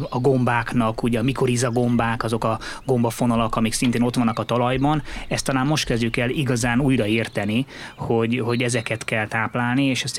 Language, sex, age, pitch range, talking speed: Hungarian, male, 20-39, 115-130 Hz, 165 wpm